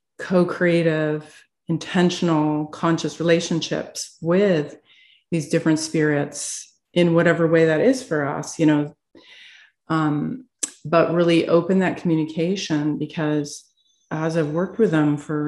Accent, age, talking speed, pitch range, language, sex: American, 40-59, 115 wpm, 155-175 Hz, English, female